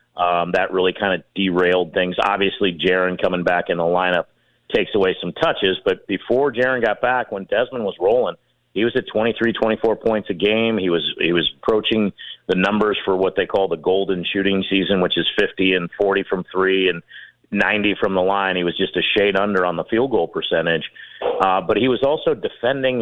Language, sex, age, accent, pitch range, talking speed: English, male, 40-59, American, 90-120 Hz, 205 wpm